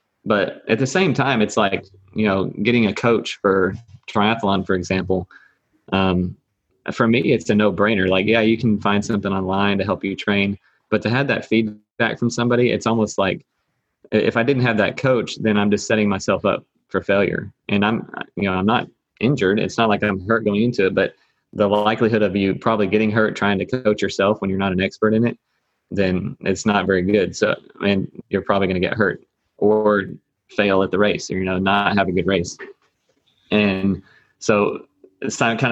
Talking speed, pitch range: 205 wpm, 95-110 Hz